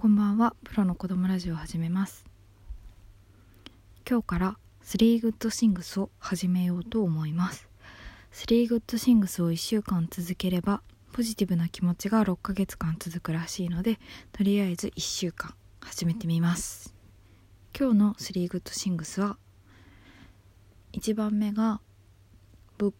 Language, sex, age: Japanese, female, 20-39